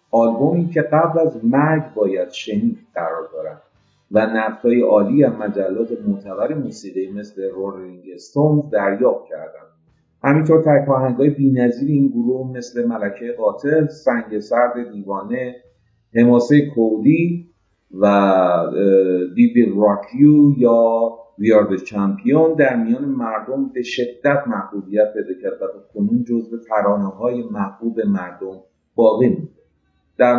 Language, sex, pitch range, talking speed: Persian, male, 100-140 Hz, 115 wpm